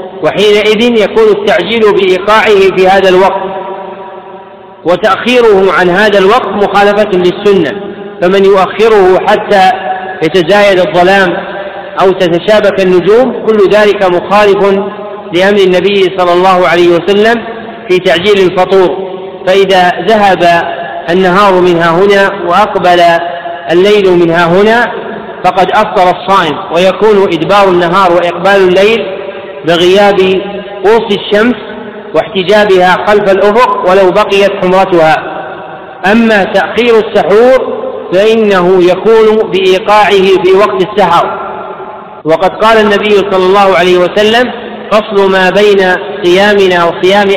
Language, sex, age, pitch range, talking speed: Arabic, male, 40-59, 185-210 Hz, 100 wpm